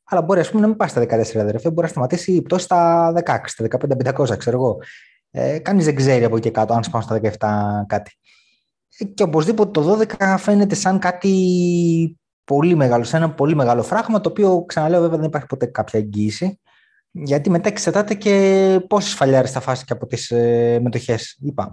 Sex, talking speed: male, 190 wpm